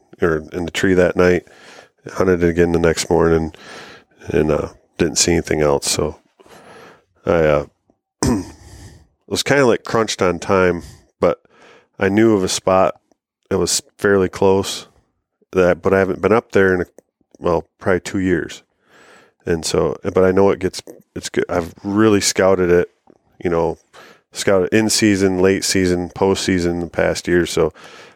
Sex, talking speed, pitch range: male, 165 wpm, 85-95 Hz